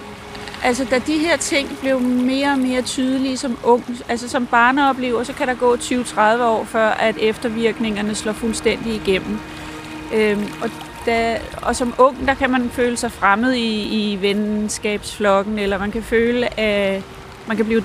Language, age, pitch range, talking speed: Danish, 30-49, 225-275 Hz, 170 wpm